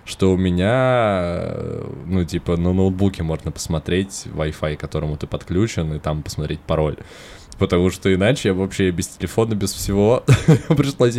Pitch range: 85-100 Hz